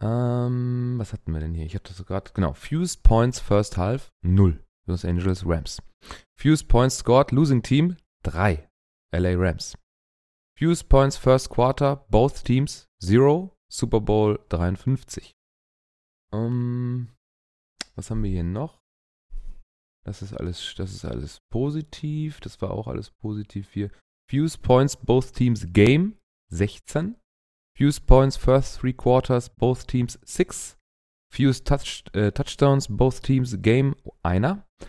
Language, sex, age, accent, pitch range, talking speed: German, male, 30-49, German, 85-125 Hz, 140 wpm